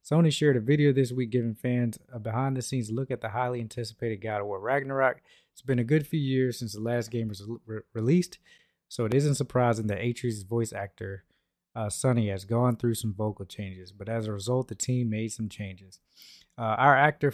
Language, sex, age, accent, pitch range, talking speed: English, male, 20-39, American, 110-135 Hz, 205 wpm